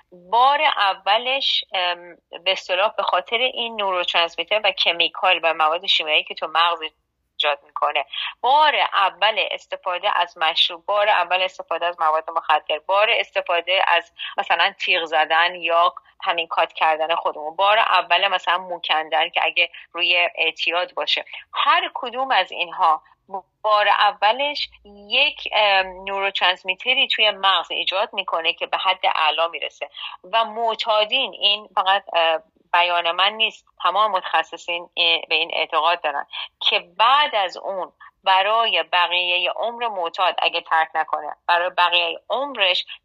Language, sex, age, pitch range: Persian, female, 30-49, 170-205 Hz